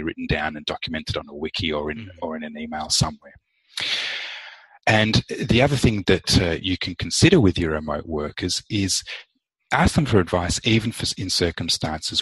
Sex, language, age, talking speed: male, English, 30-49, 175 wpm